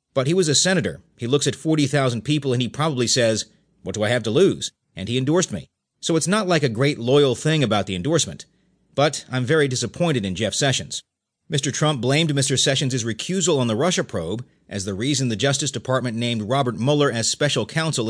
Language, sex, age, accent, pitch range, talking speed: English, male, 40-59, American, 115-150 Hz, 210 wpm